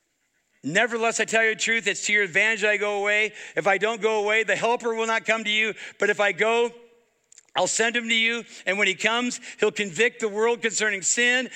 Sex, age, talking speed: male, 60-79, 235 wpm